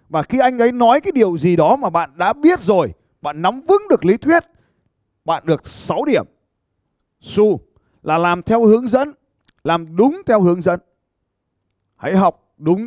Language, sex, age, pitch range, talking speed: Vietnamese, male, 30-49, 140-230 Hz, 175 wpm